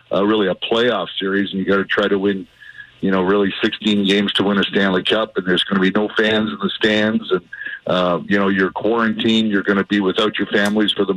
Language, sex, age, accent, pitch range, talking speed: English, male, 50-69, American, 100-110 Hz, 255 wpm